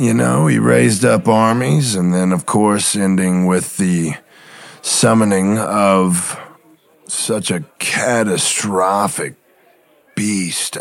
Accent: American